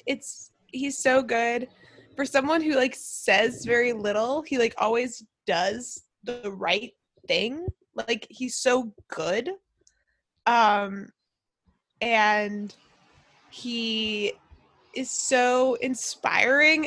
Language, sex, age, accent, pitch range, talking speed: English, female, 20-39, American, 215-265 Hz, 100 wpm